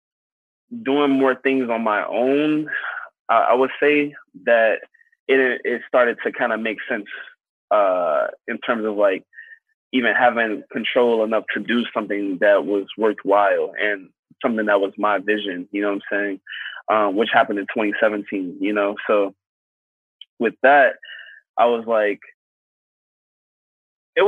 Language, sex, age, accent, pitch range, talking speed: English, male, 20-39, American, 105-140 Hz, 145 wpm